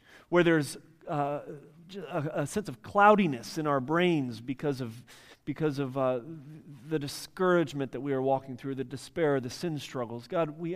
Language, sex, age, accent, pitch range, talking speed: English, male, 40-59, American, 130-165 Hz, 160 wpm